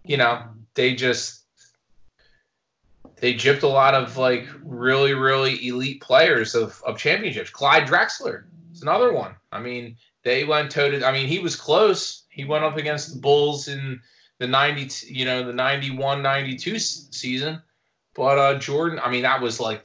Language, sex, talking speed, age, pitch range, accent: English, male, 170 wpm, 20-39, 120-140 Hz, American